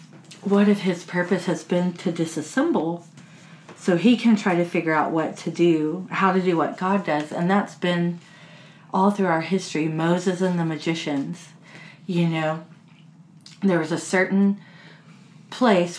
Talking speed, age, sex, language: 160 wpm, 40-59, female, English